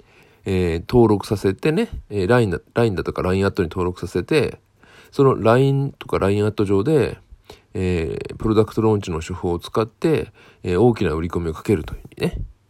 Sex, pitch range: male, 95-125 Hz